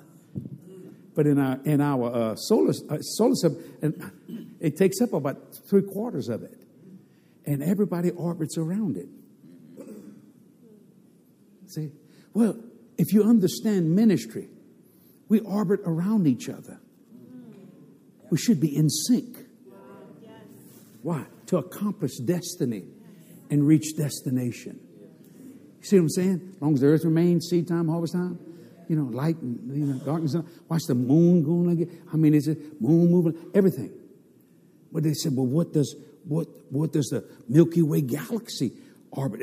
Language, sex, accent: English, male, American